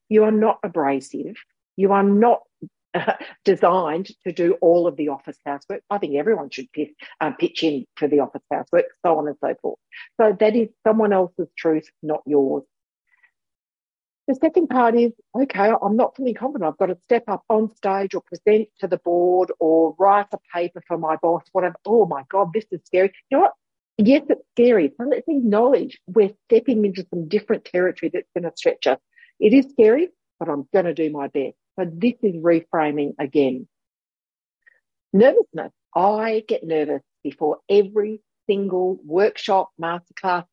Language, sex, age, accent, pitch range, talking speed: English, female, 60-79, Australian, 160-225 Hz, 180 wpm